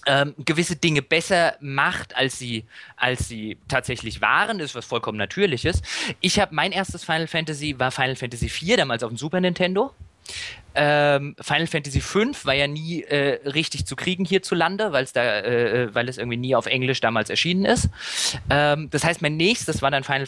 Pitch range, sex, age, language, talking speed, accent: 115-165 Hz, male, 20-39, German, 185 wpm, German